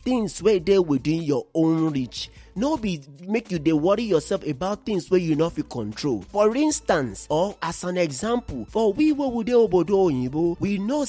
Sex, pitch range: male, 165-230 Hz